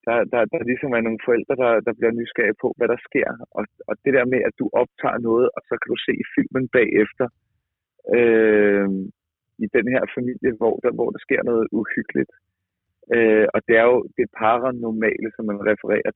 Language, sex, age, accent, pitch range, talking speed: Danish, male, 30-49, native, 105-120 Hz, 195 wpm